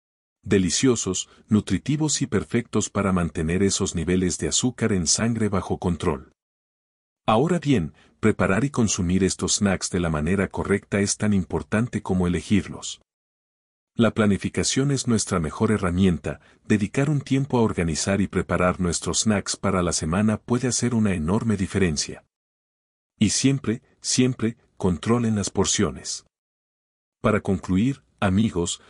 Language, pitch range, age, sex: English, 90-115 Hz, 50-69, male